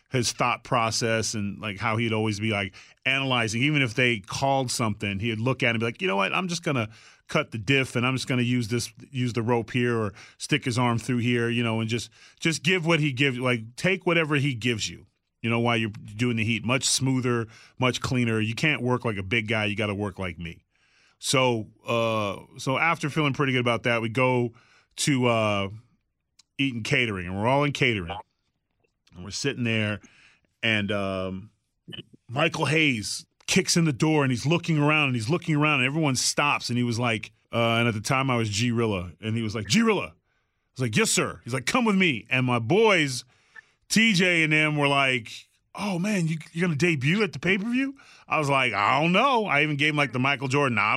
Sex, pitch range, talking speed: male, 115-150 Hz, 225 wpm